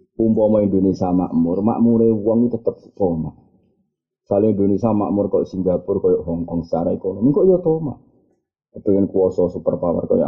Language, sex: Indonesian, male